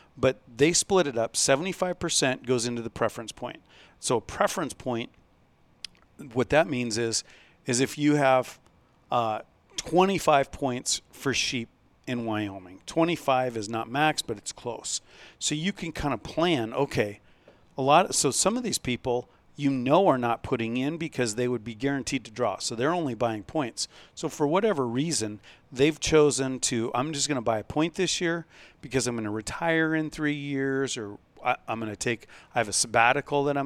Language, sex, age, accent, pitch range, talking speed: English, male, 40-59, American, 115-145 Hz, 190 wpm